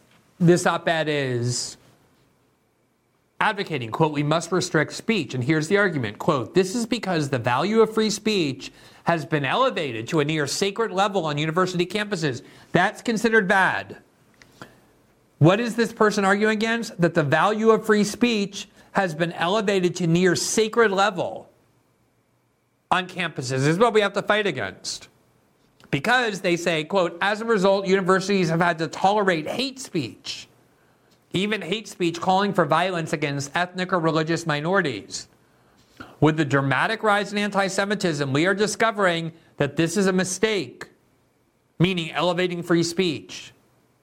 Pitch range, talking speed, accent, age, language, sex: 160-205 Hz, 145 wpm, American, 50-69, English, male